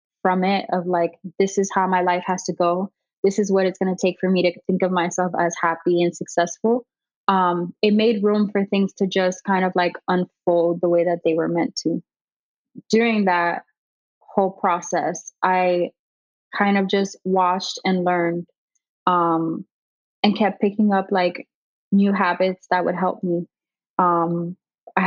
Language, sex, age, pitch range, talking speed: English, female, 20-39, 180-200 Hz, 175 wpm